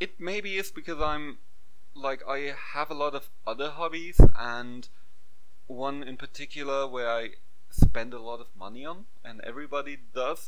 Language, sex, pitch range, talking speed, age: English, male, 110-140 Hz, 160 wpm, 30-49